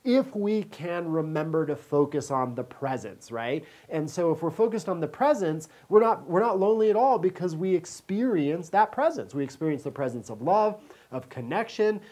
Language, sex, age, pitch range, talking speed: English, male, 40-59, 145-190 Hz, 185 wpm